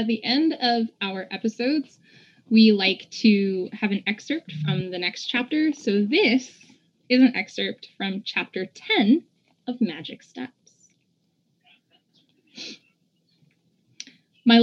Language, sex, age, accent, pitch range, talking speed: English, female, 20-39, American, 190-235 Hz, 115 wpm